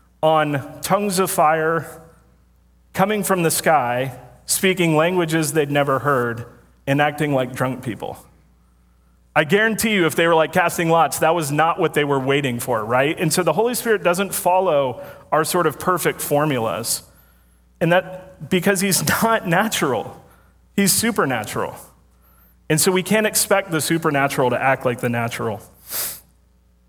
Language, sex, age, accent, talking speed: English, male, 40-59, American, 150 wpm